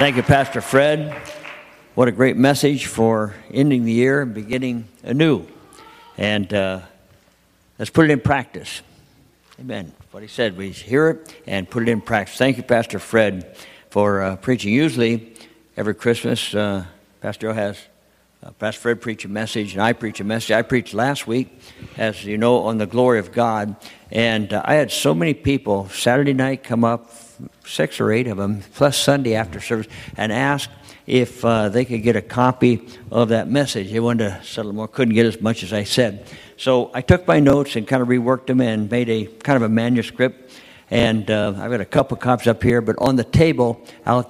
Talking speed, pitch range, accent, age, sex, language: 200 wpm, 110-125 Hz, American, 60-79, male, English